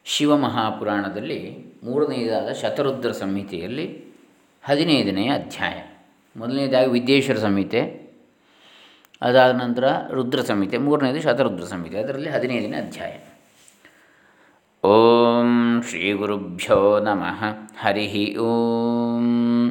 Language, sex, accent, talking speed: Kannada, male, native, 80 wpm